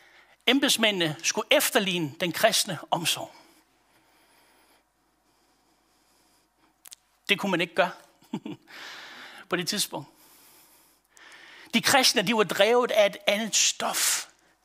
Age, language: 60-79, Danish